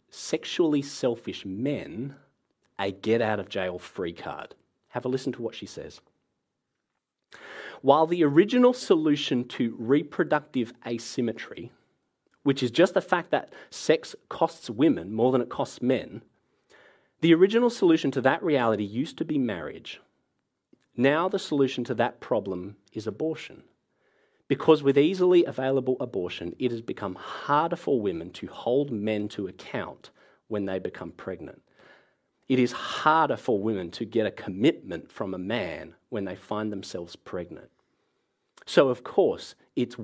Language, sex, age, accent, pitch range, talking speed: English, male, 30-49, Australian, 105-145 Hz, 140 wpm